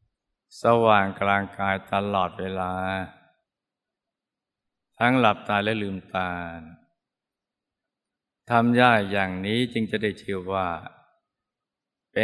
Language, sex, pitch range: Thai, male, 95-115 Hz